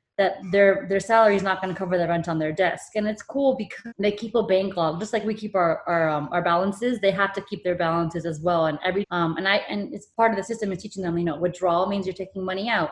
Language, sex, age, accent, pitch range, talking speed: English, female, 20-39, American, 175-205 Hz, 290 wpm